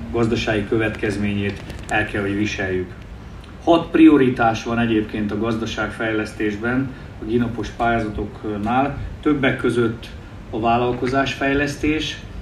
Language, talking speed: Hungarian, 90 wpm